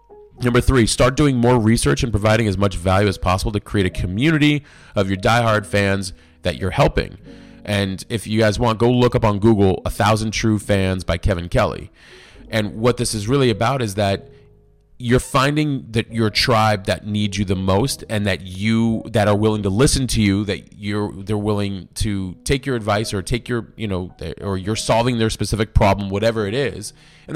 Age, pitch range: 30-49, 100-120 Hz